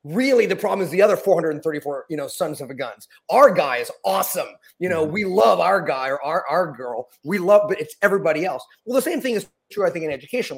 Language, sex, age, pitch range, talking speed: English, male, 30-49, 155-220 Hz, 240 wpm